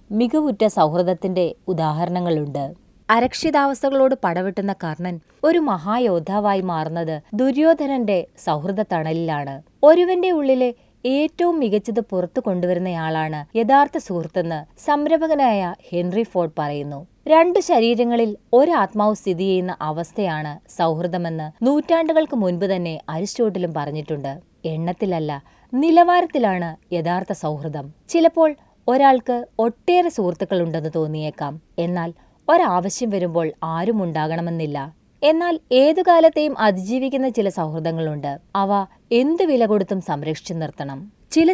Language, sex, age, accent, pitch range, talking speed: Malayalam, female, 30-49, native, 165-260 Hz, 85 wpm